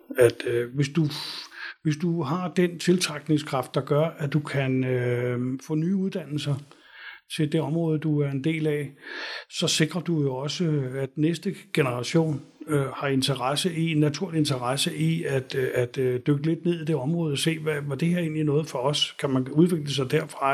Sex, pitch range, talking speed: male, 135-160 Hz, 195 wpm